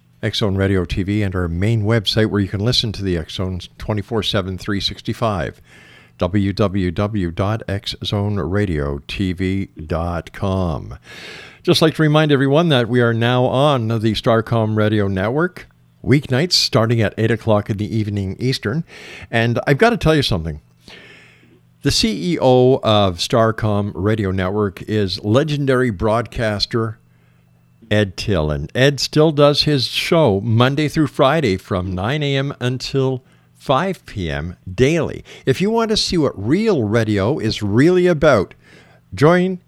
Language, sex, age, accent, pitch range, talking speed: English, male, 50-69, American, 95-125 Hz, 130 wpm